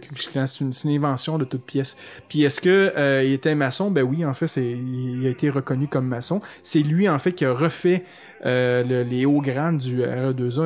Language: French